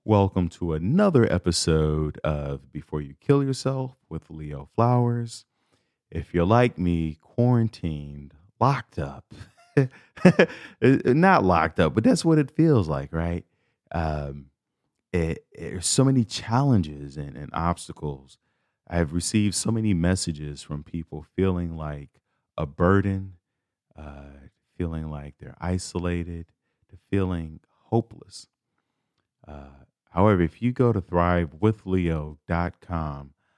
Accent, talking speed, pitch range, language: American, 115 wpm, 75-100 Hz, English